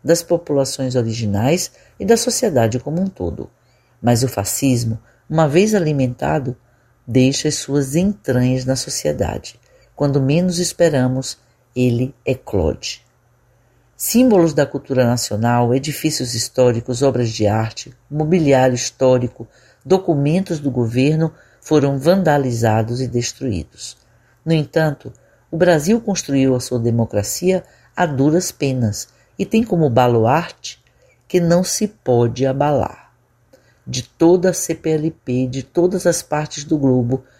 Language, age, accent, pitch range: Portuguese, 50-69, Brazilian, 120-165 Hz